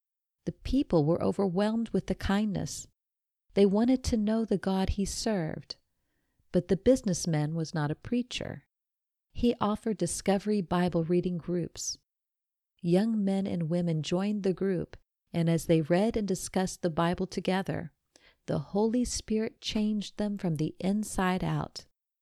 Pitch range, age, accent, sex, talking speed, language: 170-210 Hz, 50-69, American, female, 145 wpm, English